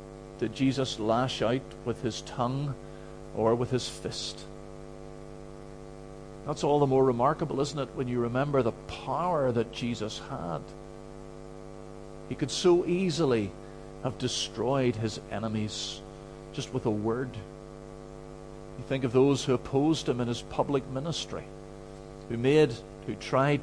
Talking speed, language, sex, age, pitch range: 135 wpm, English, male, 50-69, 90-125 Hz